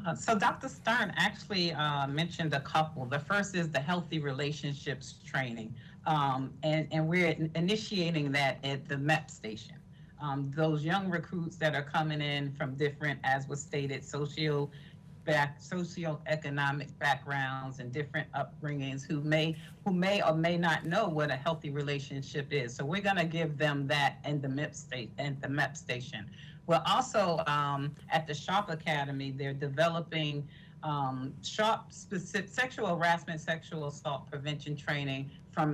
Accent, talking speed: American, 155 wpm